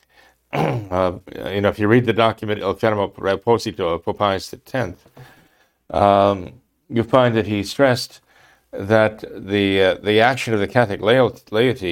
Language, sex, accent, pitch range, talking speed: English, male, American, 100-120 Hz, 150 wpm